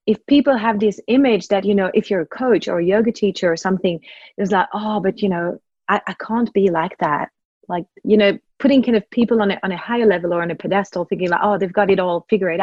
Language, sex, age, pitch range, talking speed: English, female, 30-49, 190-235 Hz, 260 wpm